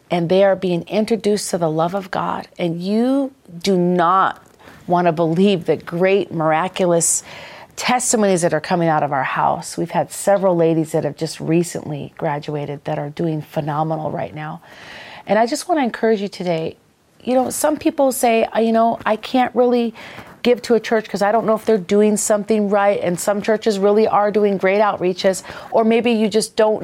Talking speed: 195 wpm